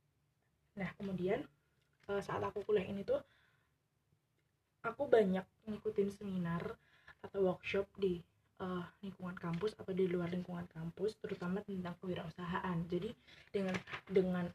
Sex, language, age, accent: female, Indonesian, 20-39, native